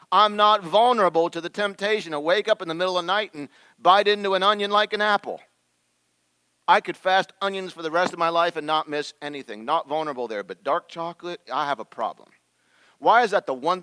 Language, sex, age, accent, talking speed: English, male, 40-59, American, 225 wpm